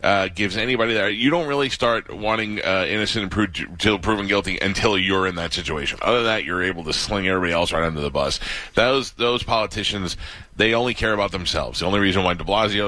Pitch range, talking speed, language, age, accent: 90-115 Hz, 215 wpm, English, 30-49, American